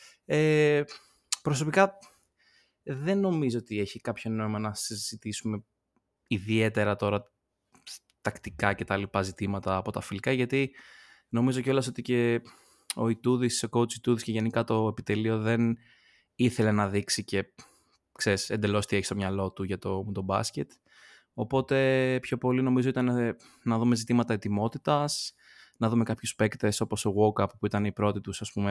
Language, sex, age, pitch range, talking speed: Greek, male, 20-39, 105-135 Hz, 150 wpm